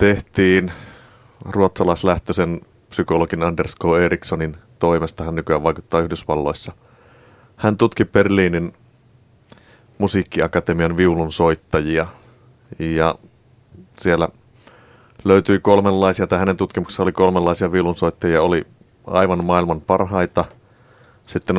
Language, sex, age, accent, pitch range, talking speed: Finnish, male, 30-49, native, 85-120 Hz, 85 wpm